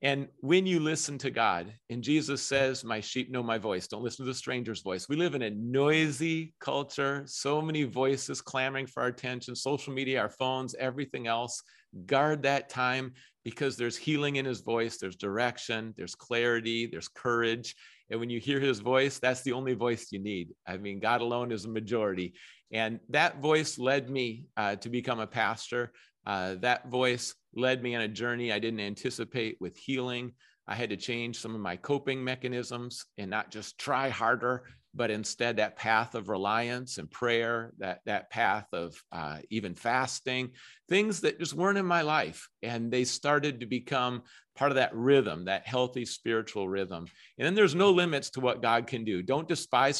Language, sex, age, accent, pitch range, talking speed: English, male, 40-59, American, 115-140 Hz, 190 wpm